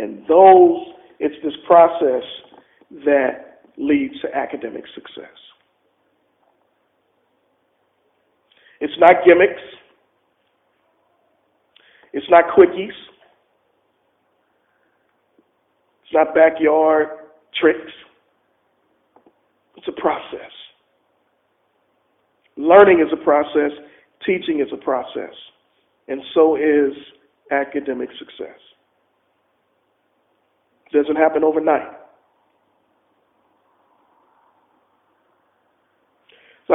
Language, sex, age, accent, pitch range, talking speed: English, male, 50-69, American, 145-170 Hz, 65 wpm